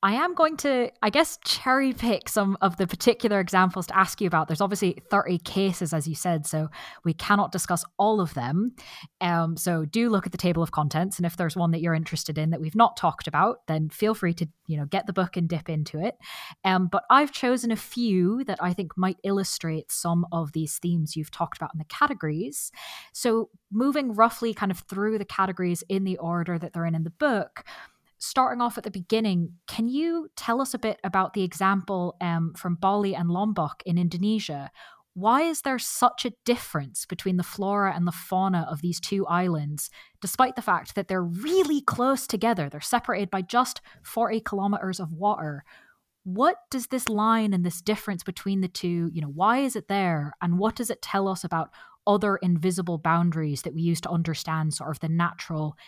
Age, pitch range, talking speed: 20-39, 170-220 Hz, 205 wpm